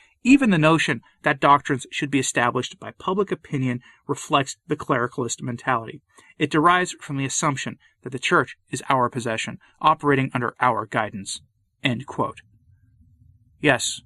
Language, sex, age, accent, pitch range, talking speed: English, male, 30-49, American, 115-150 Hz, 140 wpm